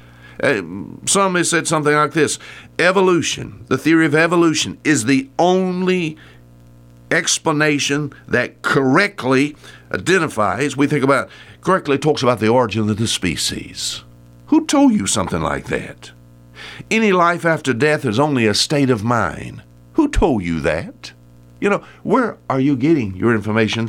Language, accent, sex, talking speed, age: English, American, male, 145 wpm, 60-79